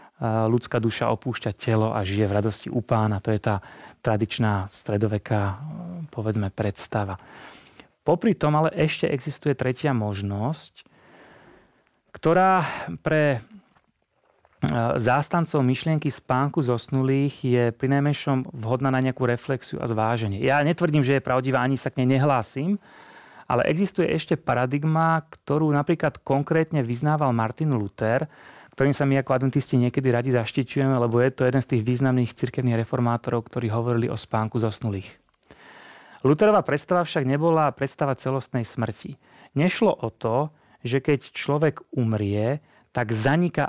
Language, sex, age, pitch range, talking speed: Czech, male, 30-49, 120-145 Hz, 130 wpm